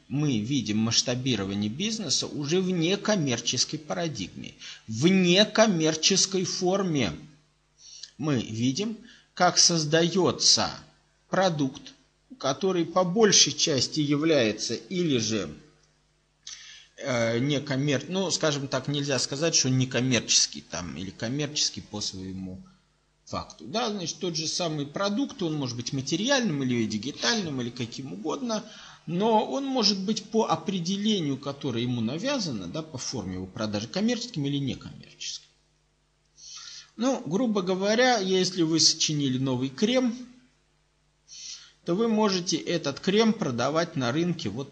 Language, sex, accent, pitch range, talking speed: Russian, male, native, 130-195 Hz, 120 wpm